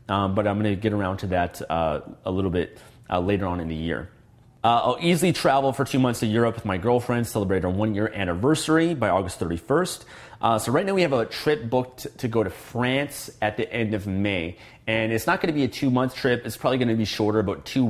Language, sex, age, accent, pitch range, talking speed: English, male, 30-49, American, 100-120 Hz, 240 wpm